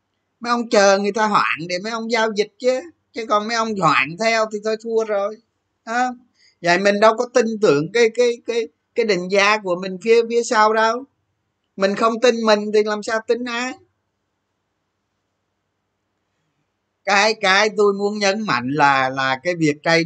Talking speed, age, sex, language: 185 wpm, 20-39, male, Vietnamese